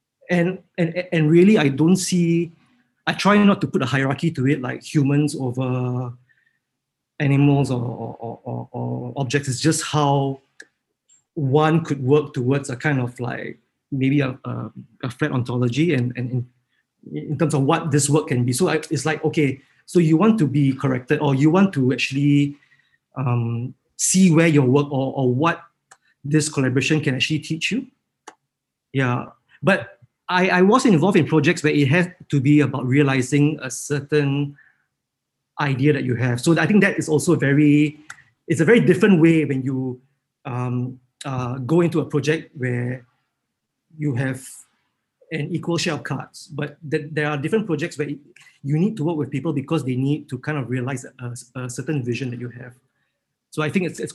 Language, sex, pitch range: English, male, 130-160 Hz